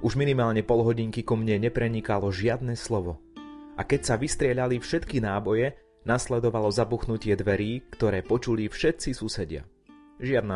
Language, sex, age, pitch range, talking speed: Slovak, male, 30-49, 100-125 Hz, 125 wpm